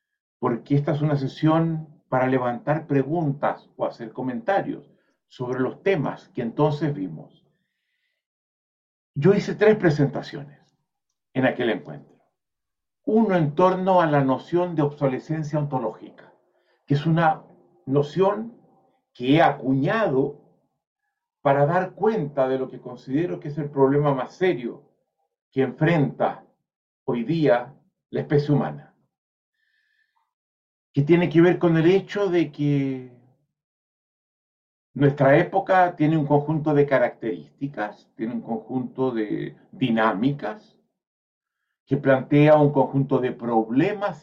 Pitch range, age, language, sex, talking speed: 135-185 Hz, 50-69, Spanish, male, 120 wpm